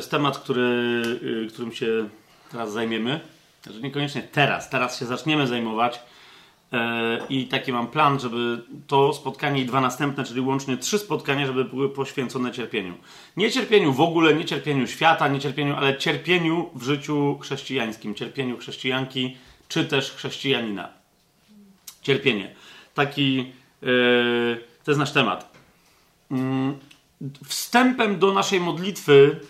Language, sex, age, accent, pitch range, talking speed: Polish, male, 30-49, native, 135-170 Hz, 120 wpm